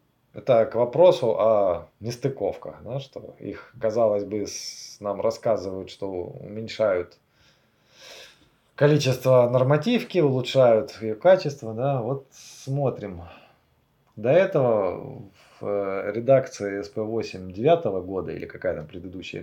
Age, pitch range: 20-39, 110-155 Hz